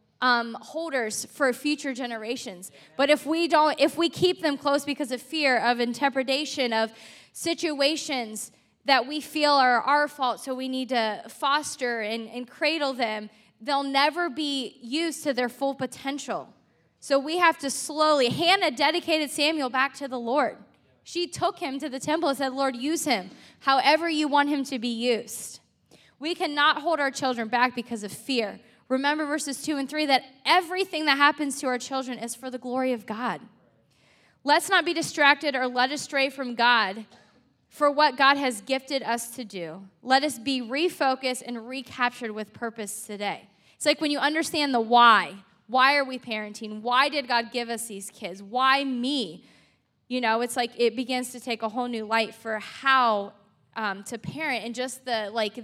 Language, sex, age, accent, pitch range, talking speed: English, female, 10-29, American, 235-290 Hz, 180 wpm